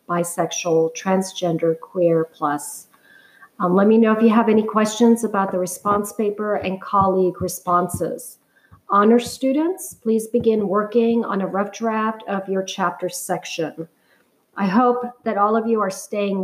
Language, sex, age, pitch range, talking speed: English, female, 40-59, 180-210 Hz, 150 wpm